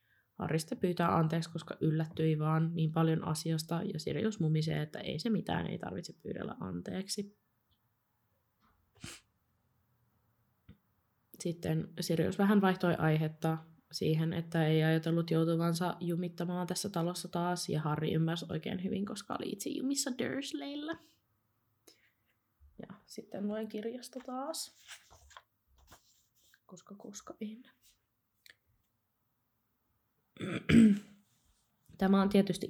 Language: Finnish